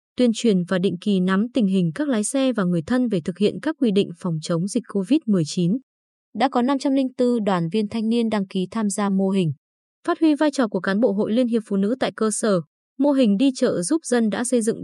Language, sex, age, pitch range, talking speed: Vietnamese, female, 20-39, 190-255 Hz, 245 wpm